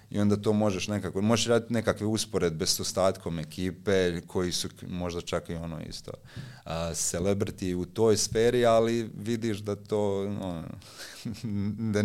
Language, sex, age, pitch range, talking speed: Croatian, male, 30-49, 90-110 Hz, 145 wpm